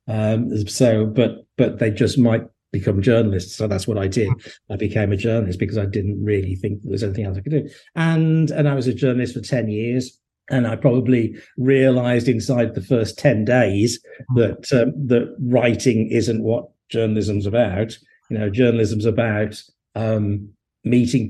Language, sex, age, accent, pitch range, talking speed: English, male, 50-69, British, 105-120 Hz, 175 wpm